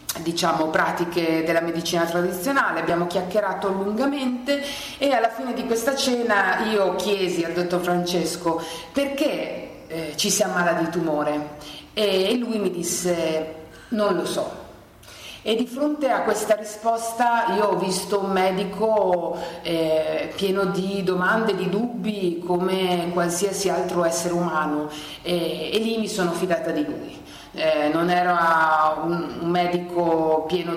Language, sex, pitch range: Italian, female, 165-210 Hz